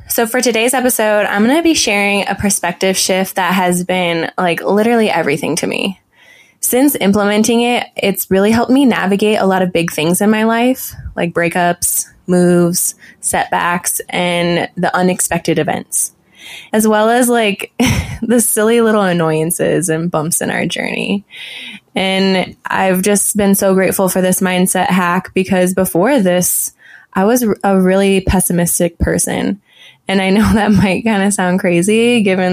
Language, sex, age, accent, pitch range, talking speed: English, female, 20-39, American, 175-210 Hz, 160 wpm